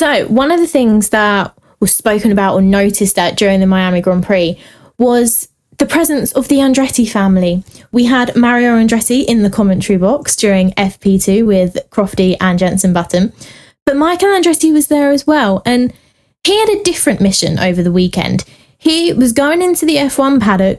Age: 20-39